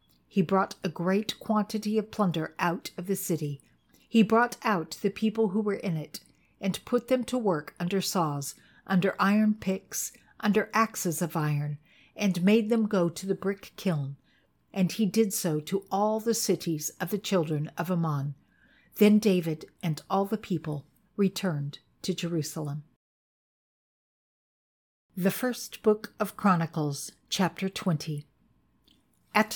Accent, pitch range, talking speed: American, 165-215 Hz, 145 wpm